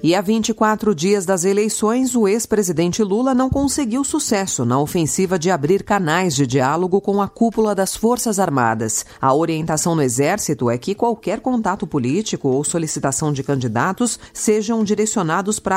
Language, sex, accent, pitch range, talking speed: Portuguese, female, Brazilian, 135-210 Hz, 155 wpm